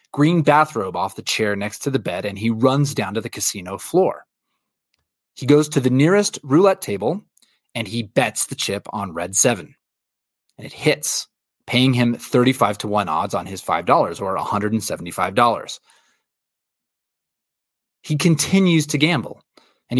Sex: male